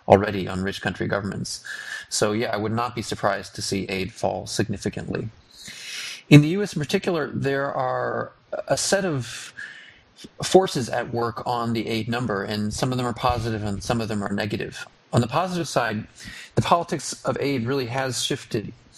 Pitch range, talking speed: 110-130 Hz, 180 wpm